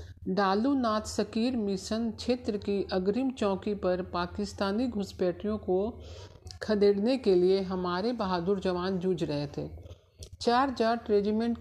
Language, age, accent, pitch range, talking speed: Hindi, 50-69, native, 180-215 Hz, 125 wpm